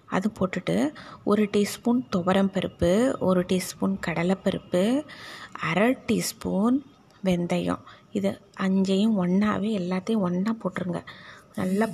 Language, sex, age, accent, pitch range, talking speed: Tamil, female, 20-39, native, 185-225 Hz, 90 wpm